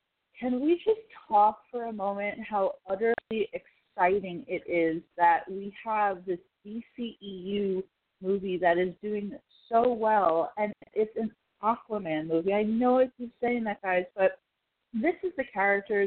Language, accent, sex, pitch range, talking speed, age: English, American, female, 170-215 Hz, 145 wpm, 30-49